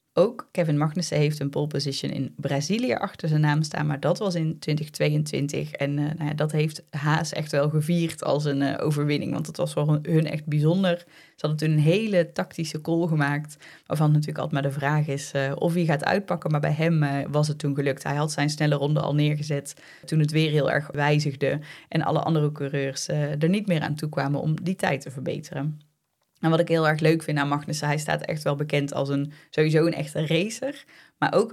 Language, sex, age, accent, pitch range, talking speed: Dutch, female, 20-39, Dutch, 145-165 Hz, 225 wpm